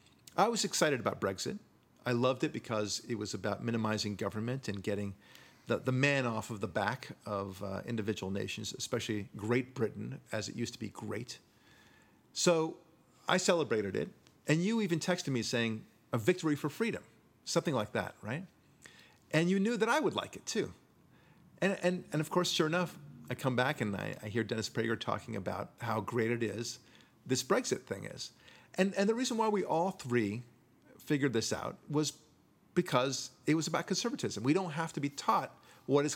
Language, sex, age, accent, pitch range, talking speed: English, male, 40-59, American, 115-160 Hz, 190 wpm